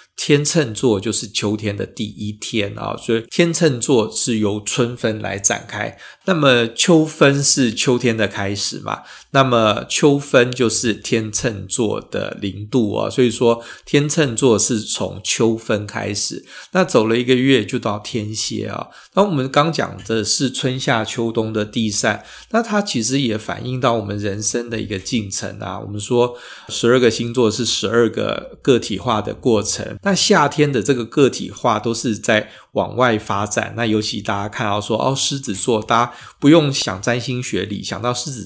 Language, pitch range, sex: Chinese, 105-130 Hz, male